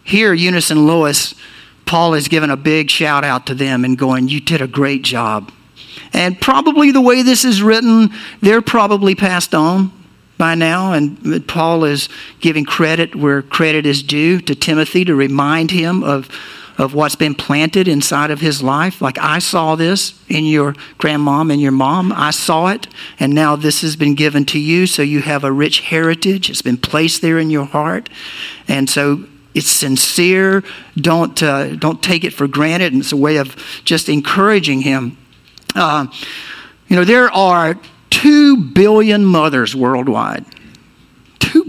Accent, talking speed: American, 170 wpm